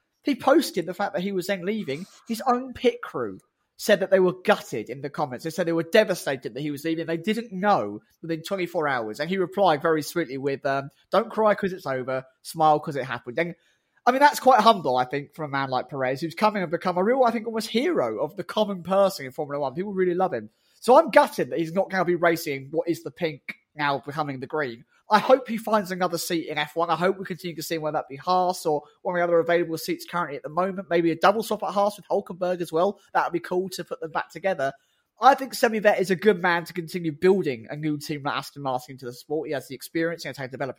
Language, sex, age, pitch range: English, male, 20-39, 155-200 Hz